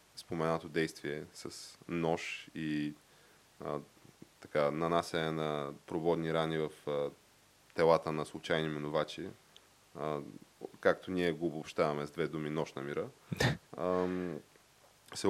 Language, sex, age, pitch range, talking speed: Bulgarian, male, 20-39, 80-95 Hz, 120 wpm